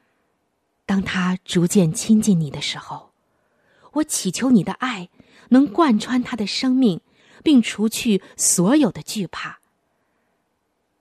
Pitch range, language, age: 175-240 Hz, Chinese, 20-39